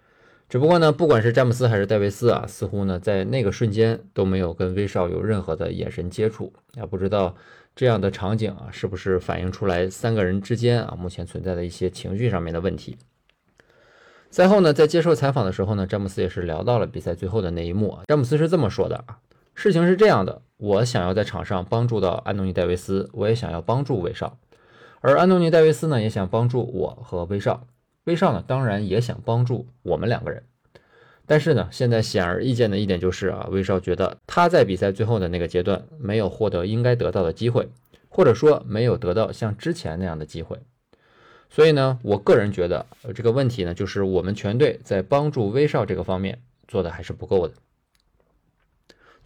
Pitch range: 95-125 Hz